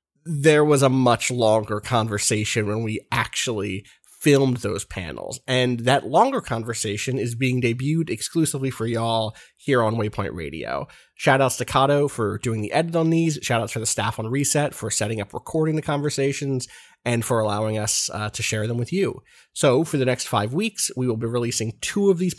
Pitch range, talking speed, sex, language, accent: 110-135 Hz, 190 wpm, male, English, American